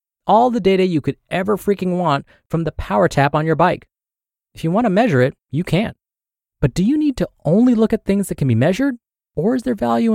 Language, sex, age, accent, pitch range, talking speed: English, male, 30-49, American, 115-190 Hz, 235 wpm